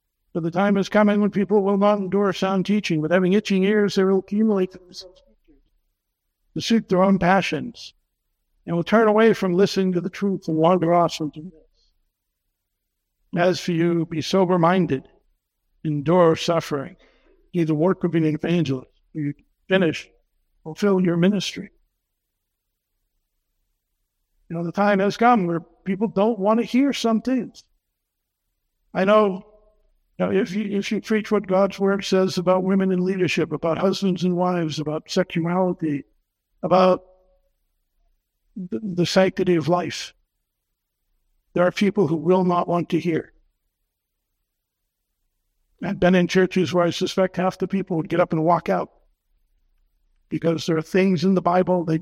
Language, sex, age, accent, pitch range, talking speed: English, male, 60-79, American, 155-195 Hz, 150 wpm